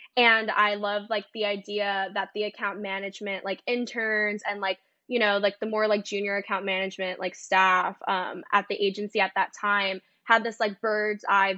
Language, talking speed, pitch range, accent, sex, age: English, 185 wpm, 200-230 Hz, American, female, 10-29